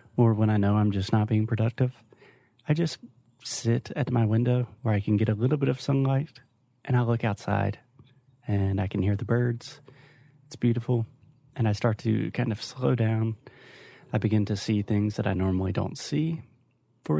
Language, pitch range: Portuguese, 110-135 Hz